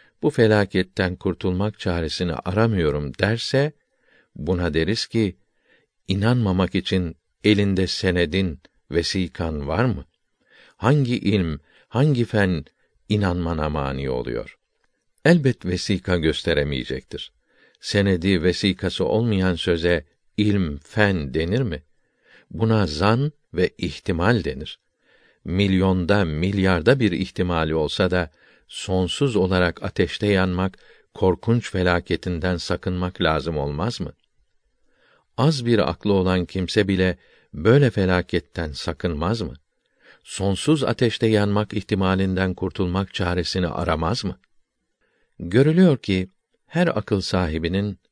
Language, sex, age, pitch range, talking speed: Turkish, male, 60-79, 85-105 Hz, 95 wpm